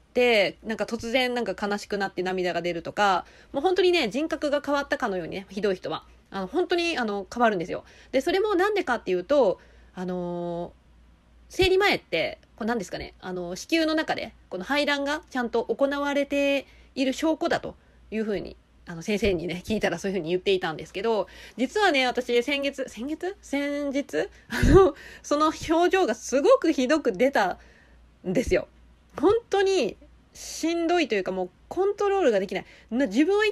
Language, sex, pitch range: Japanese, female, 200-325 Hz